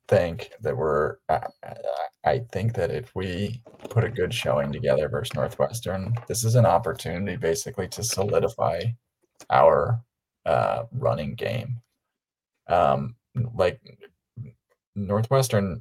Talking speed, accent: 110 wpm, American